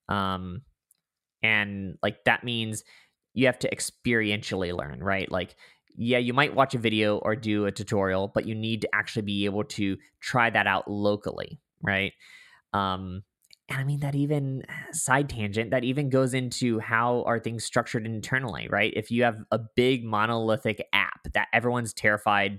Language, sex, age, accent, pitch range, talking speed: English, male, 20-39, American, 105-130 Hz, 165 wpm